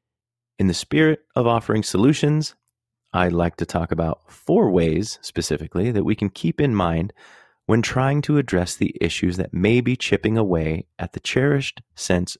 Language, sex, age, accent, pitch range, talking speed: English, male, 30-49, American, 90-120 Hz, 170 wpm